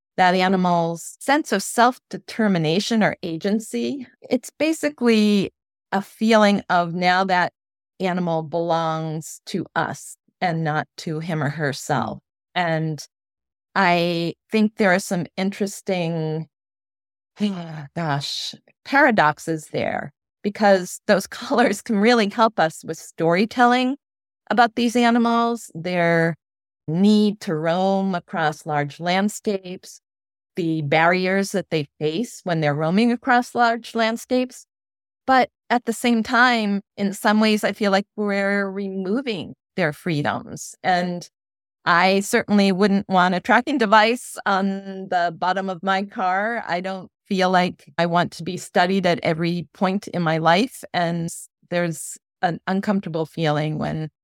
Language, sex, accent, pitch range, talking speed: English, female, American, 160-210 Hz, 125 wpm